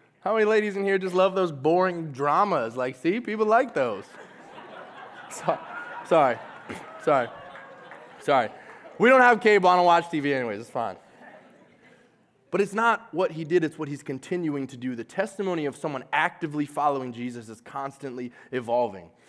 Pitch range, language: 130-180 Hz, English